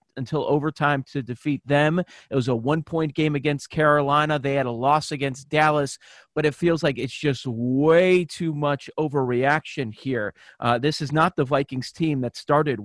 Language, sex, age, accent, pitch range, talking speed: English, male, 30-49, American, 135-160 Hz, 180 wpm